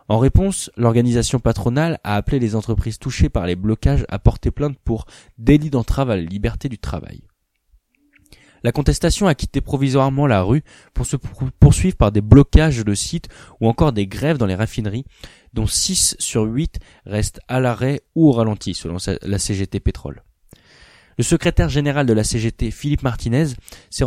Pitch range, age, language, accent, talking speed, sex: 105-140 Hz, 20-39, French, French, 170 wpm, male